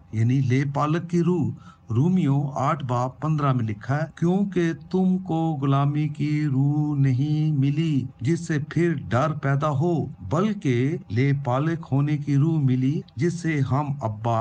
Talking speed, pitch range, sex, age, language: 155 wpm, 125-160 Hz, male, 50-69, Urdu